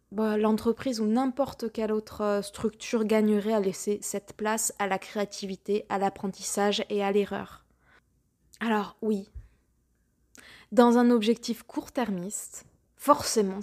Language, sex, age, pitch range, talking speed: French, female, 20-39, 200-235 Hz, 115 wpm